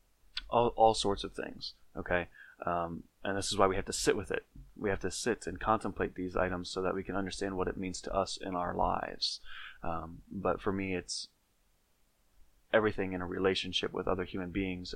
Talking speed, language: 205 wpm, English